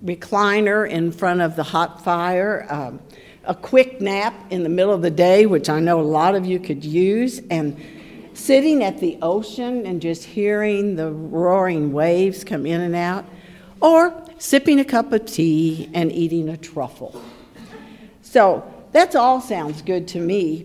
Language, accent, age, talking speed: English, American, 60-79, 170 wpm